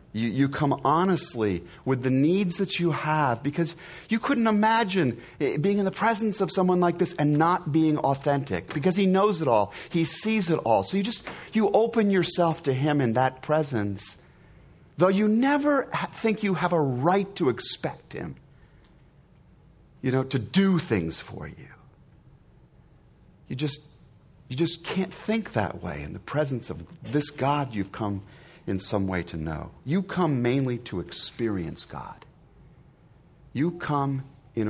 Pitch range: 105-170 Hz